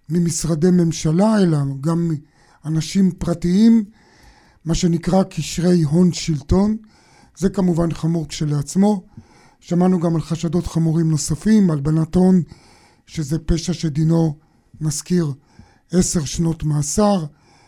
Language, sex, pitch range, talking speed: Hebrew, male, 160-190 Hz, 100 wpm